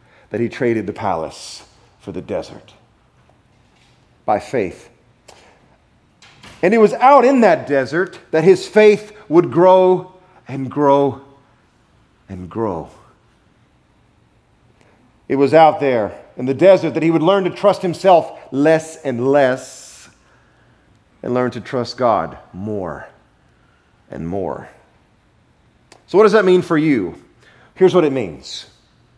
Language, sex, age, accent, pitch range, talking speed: English, male, 40-59, American, 115-185 Hz, 130 wpm